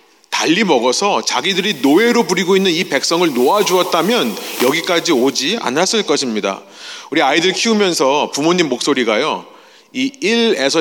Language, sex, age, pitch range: Korean, male, 30-49, 150-250 Hz